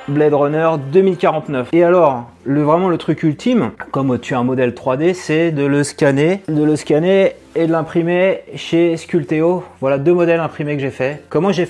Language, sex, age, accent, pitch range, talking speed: French, male, 30-49, French, 125-160 Hz, 190 wpm